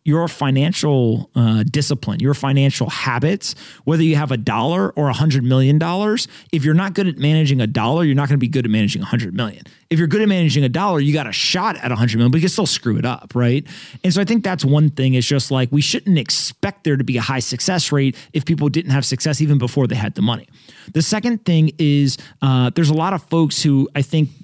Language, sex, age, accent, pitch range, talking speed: English, male, 30-49, American, 130-165 Hz, 255 wpm